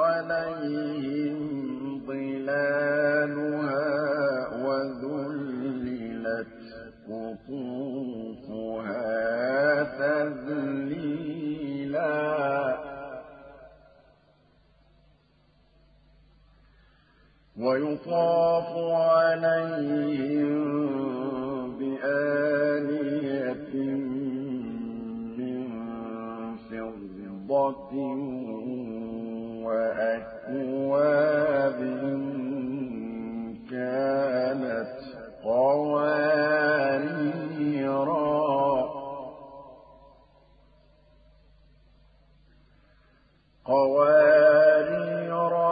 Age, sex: 50-69, male